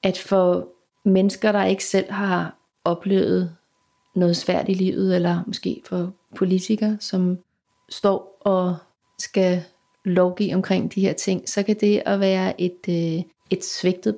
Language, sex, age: Danish, female, 30-49